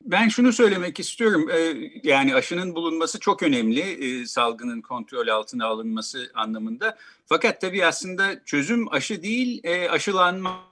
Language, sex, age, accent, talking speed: Turkish, male, 50-69, native, 120 wpm